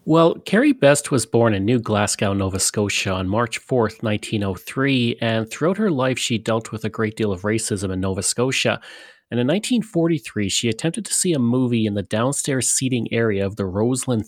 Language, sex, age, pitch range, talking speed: English, male, 30-49, 110-150 Hz, 195 wpm